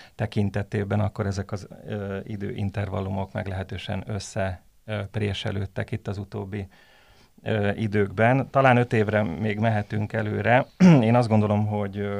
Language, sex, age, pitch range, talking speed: Hungarian, male, 30-49, 100-110 Hz, 110 wpm